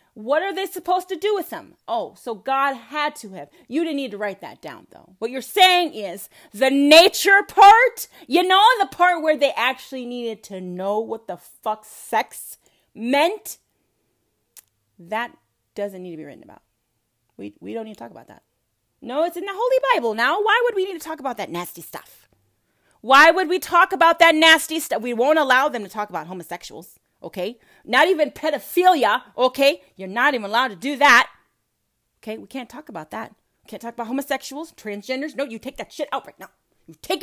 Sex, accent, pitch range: female, American, 200-315 Hz